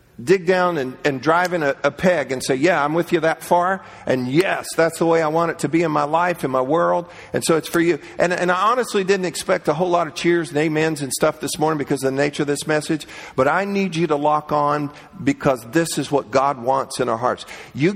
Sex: male